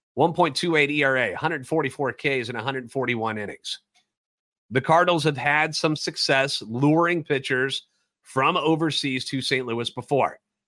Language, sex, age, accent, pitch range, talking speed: English, male, 30-49, American, 135-165 Hz, 110 wpm